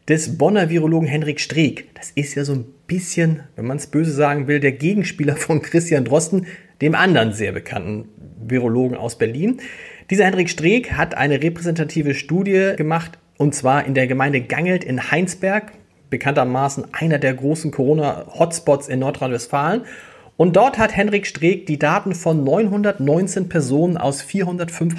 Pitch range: 135-185 Hz